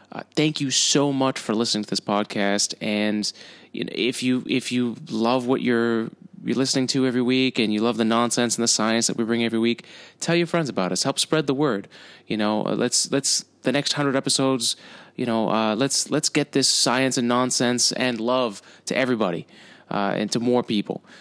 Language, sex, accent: English, male, American